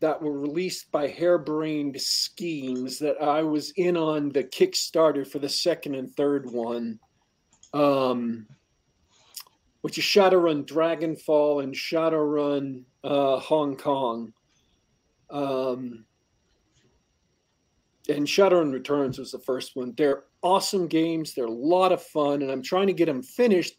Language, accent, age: English, American, 40-59